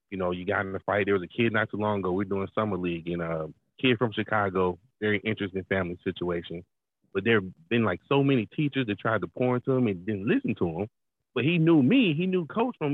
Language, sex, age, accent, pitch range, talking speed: English, male, 30-49, American, 105-170 Hz, 265 wpm